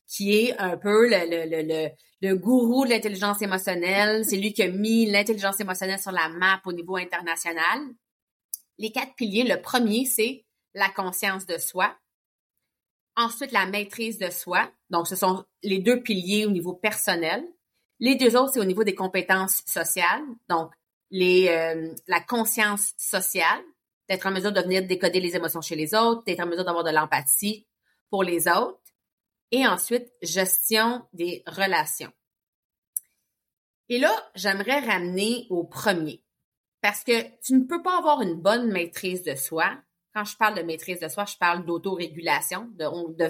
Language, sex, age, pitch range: French, female, 30-49, 175-225 Hz